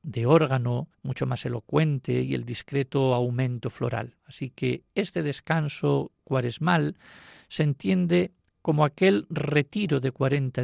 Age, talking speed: 50-69, 125 wpm